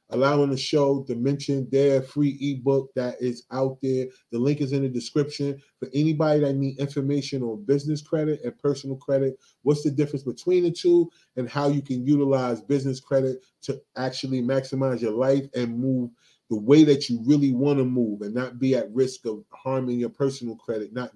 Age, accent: 30-49, American